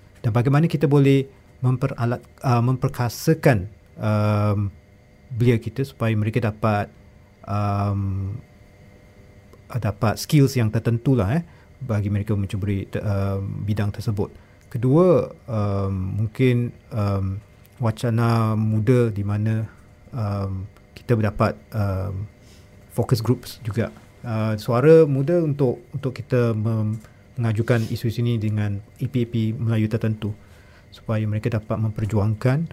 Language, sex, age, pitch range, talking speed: Malay, male, 40-59, 100-120 Hz, 110 wpm